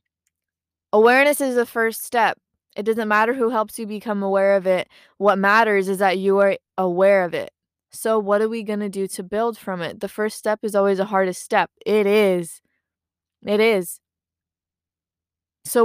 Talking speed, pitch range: 180 wpm, 195-230 Hz